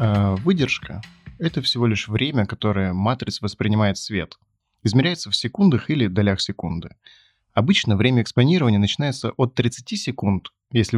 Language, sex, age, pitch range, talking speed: Russian, male, 20-39, 105-130 Hz, 130 wpm